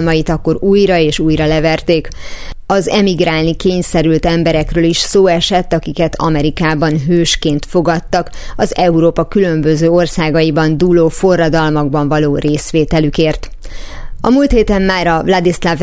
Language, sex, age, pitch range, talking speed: Hungarian, female, 30-49, 165-185 Hz, 115 wpm